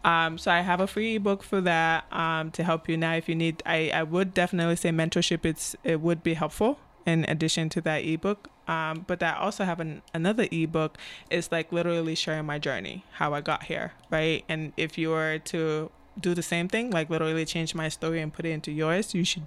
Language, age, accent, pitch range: English, 20-39, American, 160-180 Hz